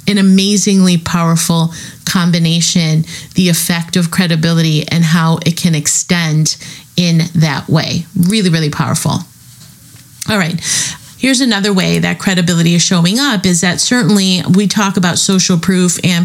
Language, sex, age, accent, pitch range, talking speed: English, female, 30-49, American, 165-185 Hz, 140 wpm